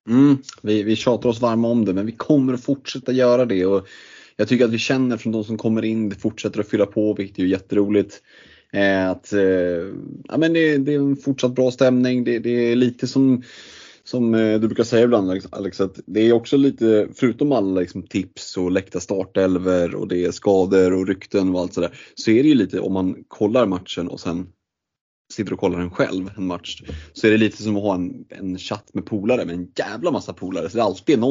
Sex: male